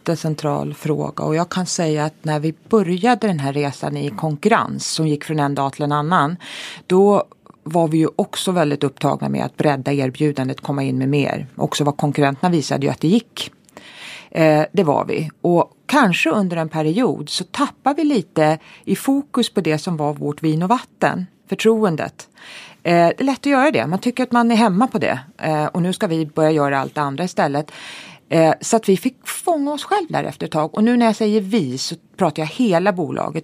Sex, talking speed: female, 205 wpm